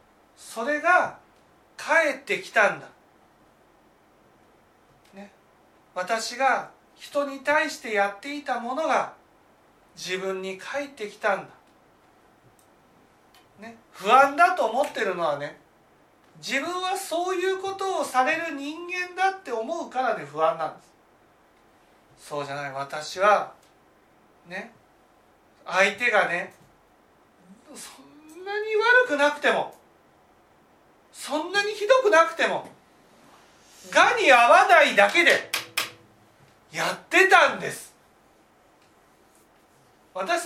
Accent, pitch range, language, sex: native, 210-350 Hz, Japanese, male